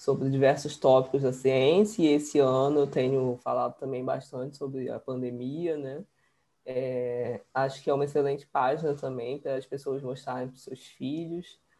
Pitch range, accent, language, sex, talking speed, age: 130-145 Hz, Brazilian, Portuguese, female, 170 wpm, 20-39